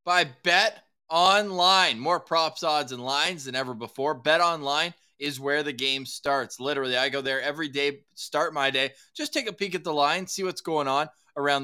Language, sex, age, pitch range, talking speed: English, male, 20-39, 130-170 Hz, 200 wpm